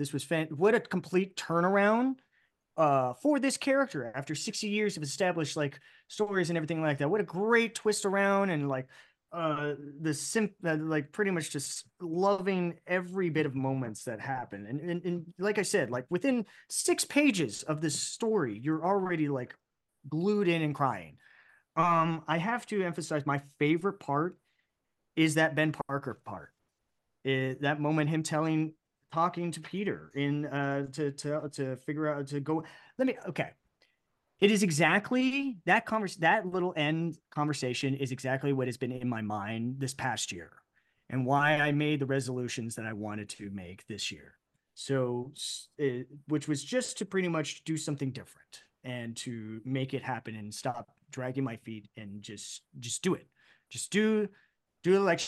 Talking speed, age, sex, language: 175 wpm, 30-49, male, English